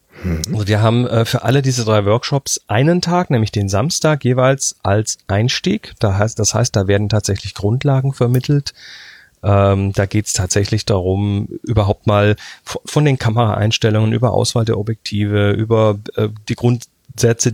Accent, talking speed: German, 135 wpm